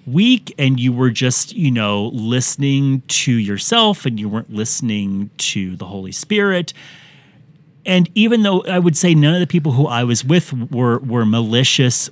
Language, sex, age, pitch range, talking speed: English, male, 30-49, 120-160 Hz, 175 wpm